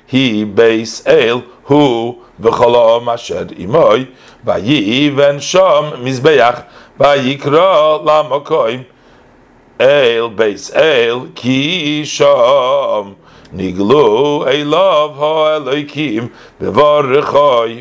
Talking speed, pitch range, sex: 95 wpm, 125-155 Hz, male